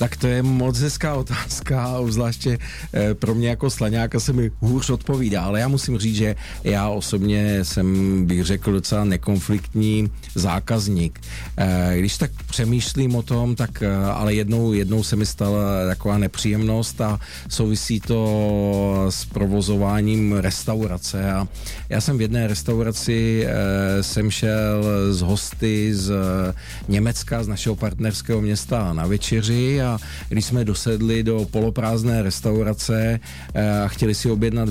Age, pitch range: 40-59, 100-120 Hz